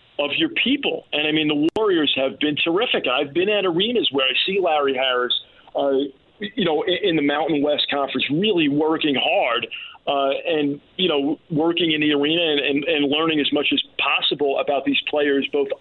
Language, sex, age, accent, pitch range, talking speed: English, male, 40-59, American, 140-185 Hz, 195 wpm